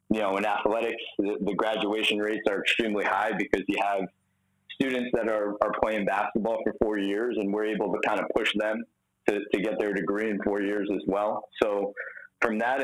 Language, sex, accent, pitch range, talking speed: English, male, American, 100-115 Hz, 200 wpm